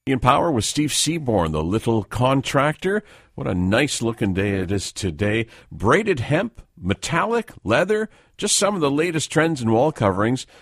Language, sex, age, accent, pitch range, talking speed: English, male, 50-69, American, 95-135 Hz, 165 wpm